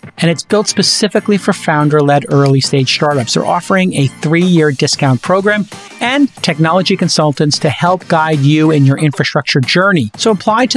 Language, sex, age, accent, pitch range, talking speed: English, male, 40-59, American, 150-195 Hz, 180 wpm